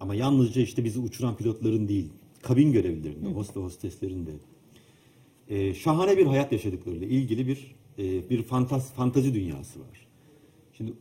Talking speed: 125 wpm